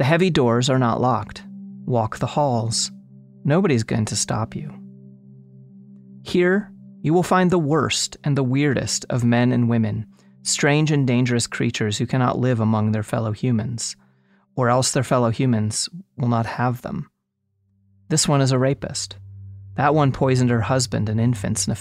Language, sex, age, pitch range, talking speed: English, male, 30-49, 100-135 Hz, 170 wpm